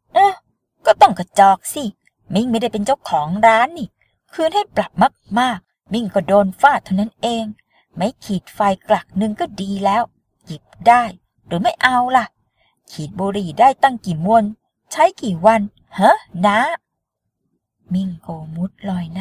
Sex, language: female, Thai